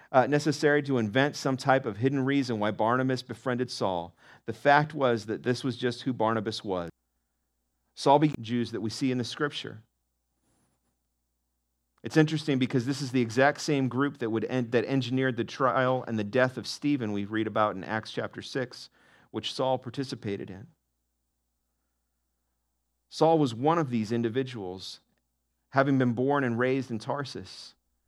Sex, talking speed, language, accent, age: male, 165 wpm, English, American, 40-59